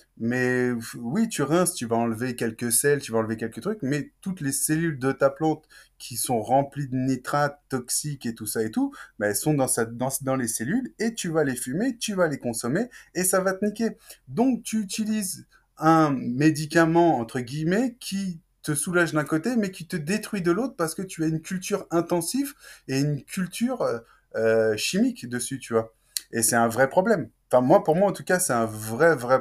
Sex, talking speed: male, 215 wpm